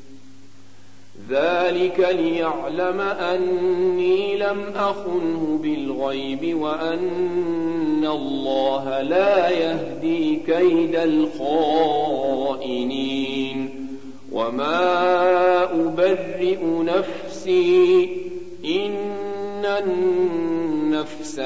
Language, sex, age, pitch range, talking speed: Arabic, male, 50-69, 135-190 Hz, 50 wpm